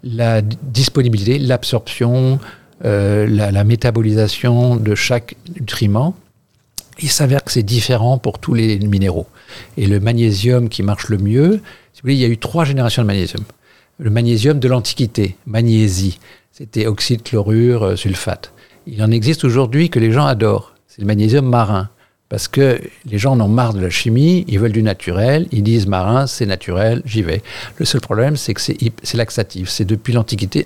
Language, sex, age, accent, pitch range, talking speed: French, male, 50-69, French, 105-125 Hz, 170 wpm